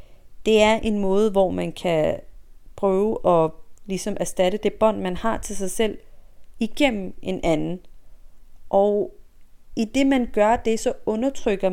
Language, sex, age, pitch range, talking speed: Danish, female, 30-49, 190-235 Hz, 150 wpm